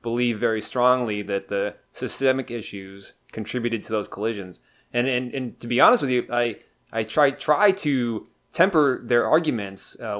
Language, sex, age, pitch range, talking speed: English, male, 20-39, 105-125 Hz, 165 wpm